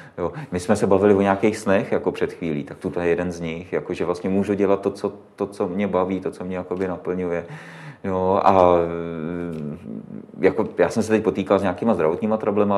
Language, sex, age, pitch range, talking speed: Czech, male, 30-49, 90-100 Hz, 210 wpm